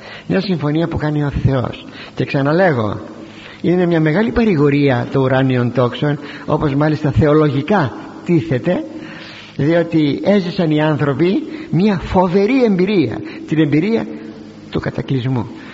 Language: Greek